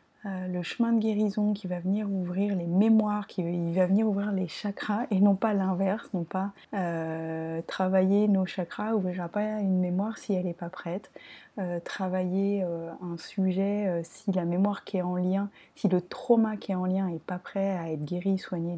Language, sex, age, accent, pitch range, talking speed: French, female, 20-39, French, 180-215 Hz, 205 wpm